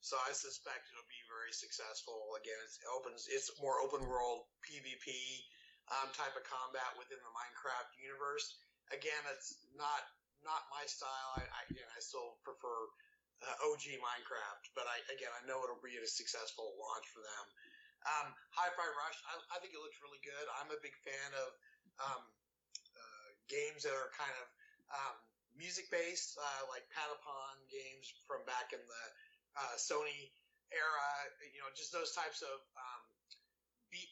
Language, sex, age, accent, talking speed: English, male, 30-49, American, 165 wpm